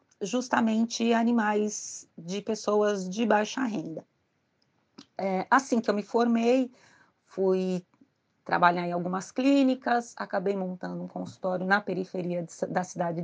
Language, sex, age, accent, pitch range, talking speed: Portuguese, female, 30-49, Brazilian, 175-225 Hz, 115 wpm